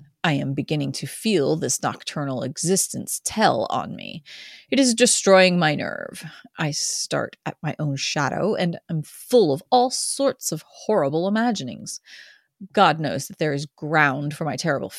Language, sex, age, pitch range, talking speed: English, female, 30-49, 150-200 Hz, 160 wpm